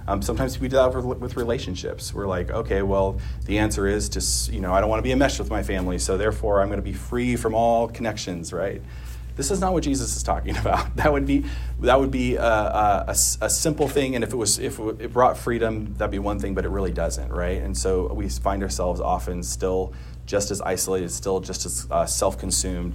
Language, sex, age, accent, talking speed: English, male, 30-49, American, 235 wpm